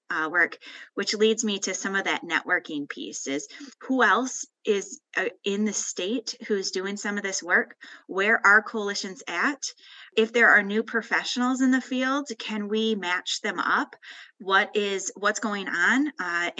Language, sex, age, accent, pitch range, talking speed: Polish, female, 20-39, American, 190-245 Hz, 165 wpm